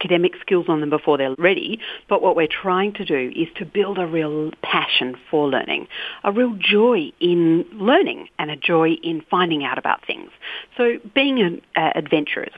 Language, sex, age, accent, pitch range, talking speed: English, female, 50-69, Australian, 155-205 Hz, 185 wpm